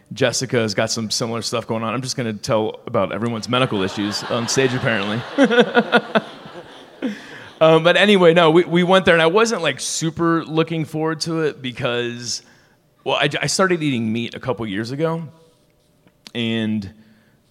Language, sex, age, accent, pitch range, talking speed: English, male, 30-49, American, 115-155 Hz, 170 wpm